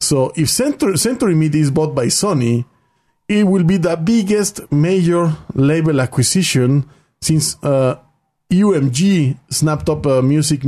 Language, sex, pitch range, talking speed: English, male, 130-165 Hz, 135 wpm